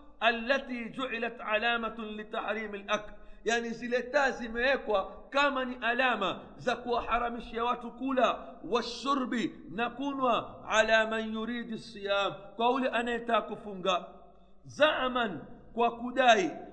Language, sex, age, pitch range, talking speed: Swahili, male, 50-69, 220-250 Hz, 95 wpm